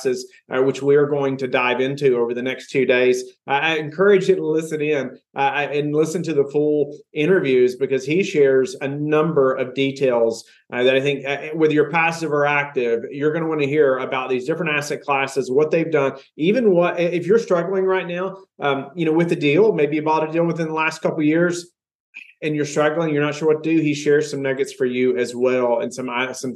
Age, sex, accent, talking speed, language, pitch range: 30-49, male, American, 230 wpm, English, 130-155 Hz